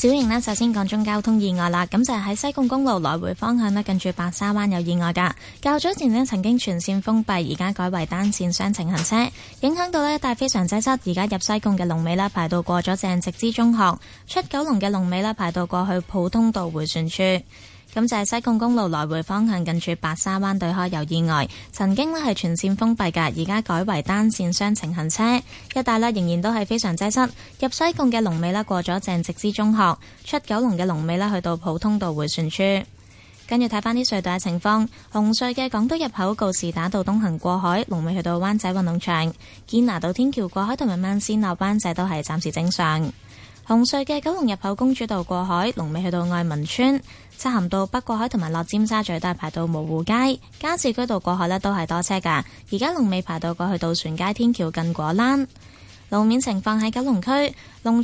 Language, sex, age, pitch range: Chinese, female, 10-29, 175-230 Hz